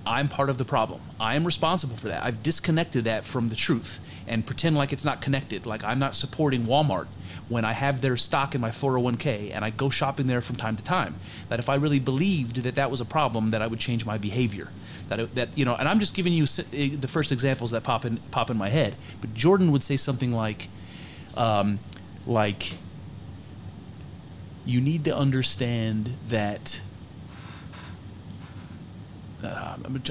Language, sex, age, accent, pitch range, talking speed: English, male, 30-49, American, 105-140 Hz, 185 wpm